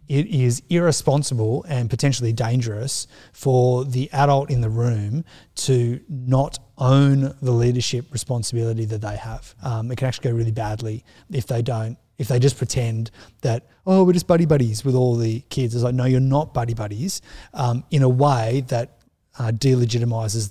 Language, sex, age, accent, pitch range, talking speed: English, male, 30-49, Australian, 115-140 Hz, 175 wpm